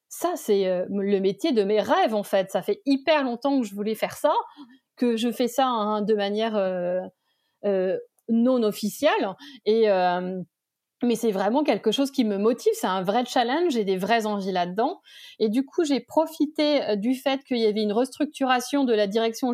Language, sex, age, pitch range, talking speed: French, female, 30-49, 210-255 Hz, 195 wpm